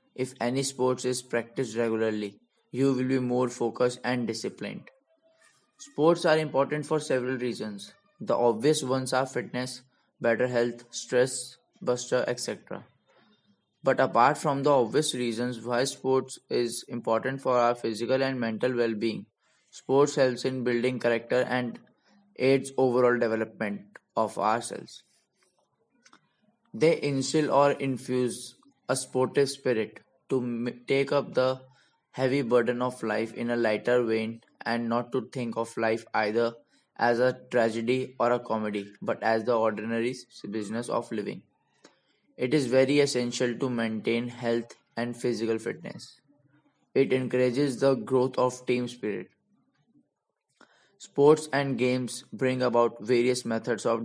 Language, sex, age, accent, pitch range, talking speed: English, male, 20-39, Indian, 120-135 Hz, 135 wpm